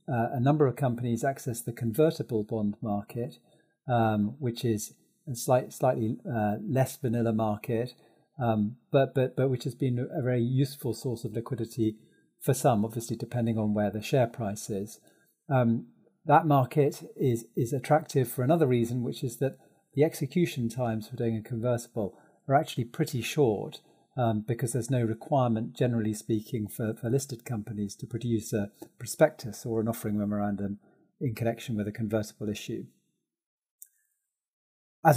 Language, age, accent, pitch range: English, 40-59, British, 115-140 Hz